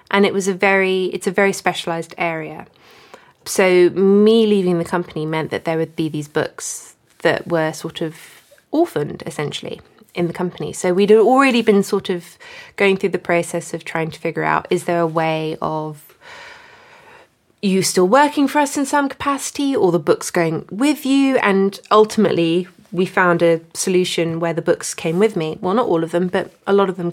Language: English